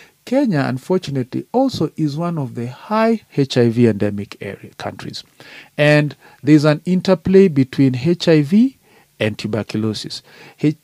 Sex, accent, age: male, South African, 40-59